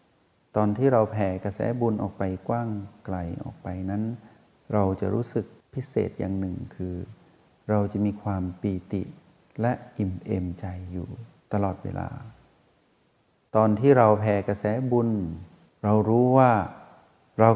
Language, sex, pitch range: Thai, male, 95-125 Hz